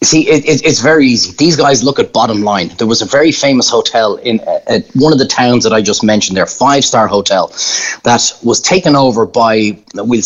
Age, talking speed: 30-49, 200 wpm